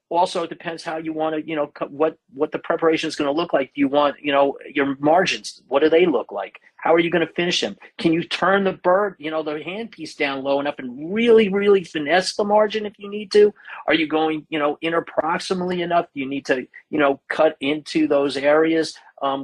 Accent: American